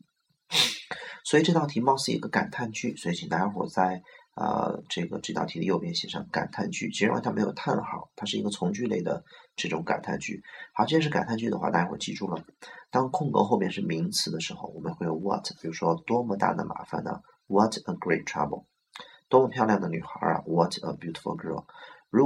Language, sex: Chinese, male